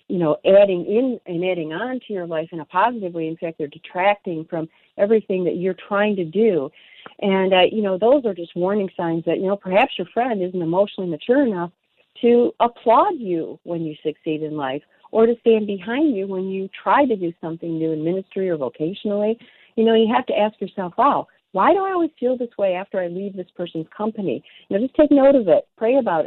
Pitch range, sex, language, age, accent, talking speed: 170-225 Hz, female, English, 50-69, American, 225 wpm